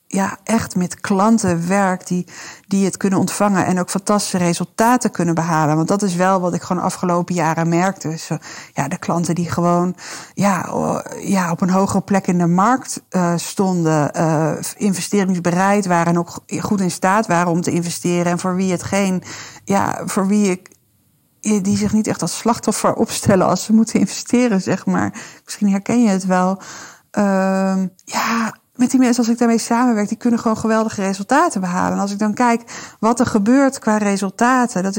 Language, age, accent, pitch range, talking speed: Dutch, 50-69, Dutch, 185-225 Hz, 190 wpm